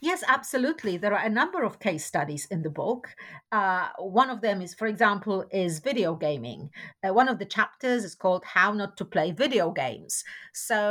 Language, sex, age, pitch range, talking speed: English, female, 50-69, 175-245 Hz, 200 wpm